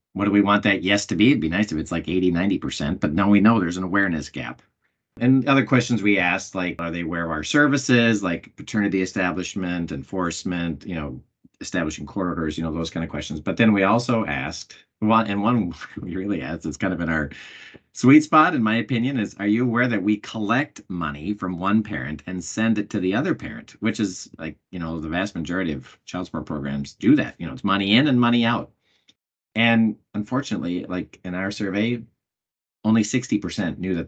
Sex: male